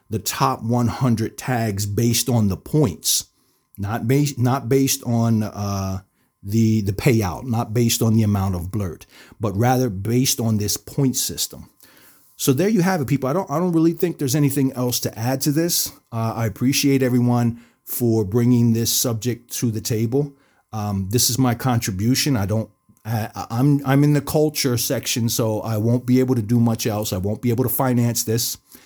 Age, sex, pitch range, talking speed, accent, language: 30-49, male, 110-135 Hz, 185 wpm, American, English